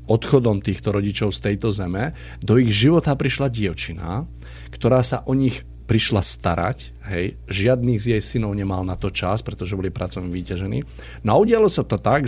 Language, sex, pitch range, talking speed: Slovak, male, 100-130 Hz, 170 wpm